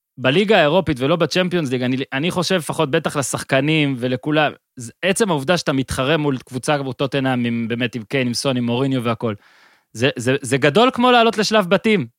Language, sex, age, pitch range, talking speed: Hebrew, male, 30-49, 135-180 Hz, 170 wpm